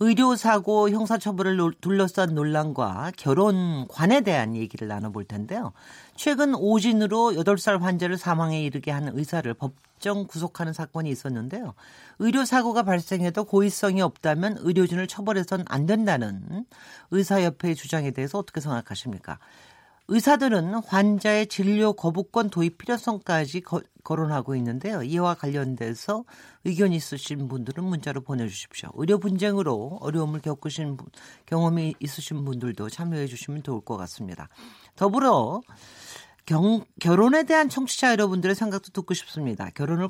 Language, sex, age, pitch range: Korean, male, 40-59, 140-205 Hz